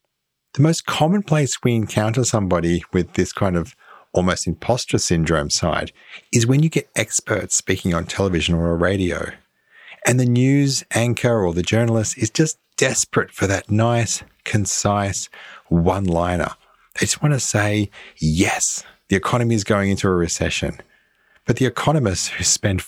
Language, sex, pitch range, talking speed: English, male, 90-125 Hz, 155 wpm